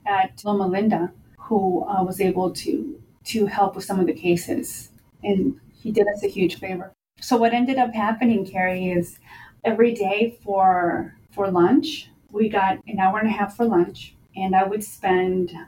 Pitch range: 185-210 Hz